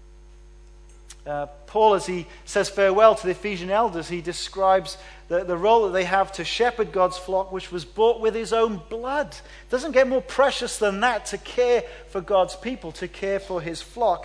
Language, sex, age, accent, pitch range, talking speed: English, male, 40-59, British, 155-195 Hz, 195 wpm